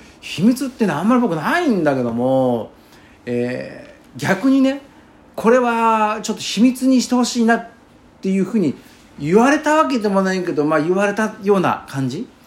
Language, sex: Japanese, male